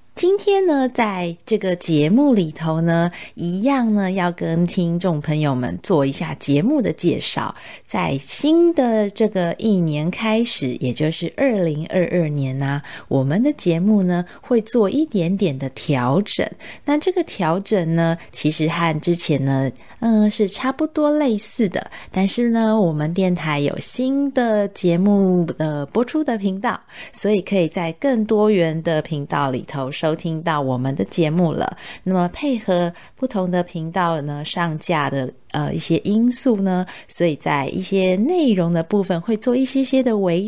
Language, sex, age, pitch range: Chinese, female, 30-49, 165-220 Hz